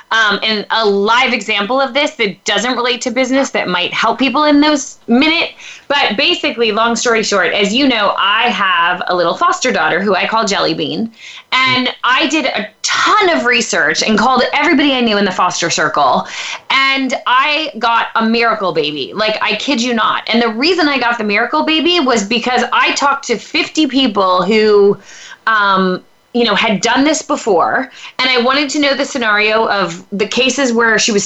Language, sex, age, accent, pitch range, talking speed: English, female, 20-39, American, 215-280 Hz, 190 wpm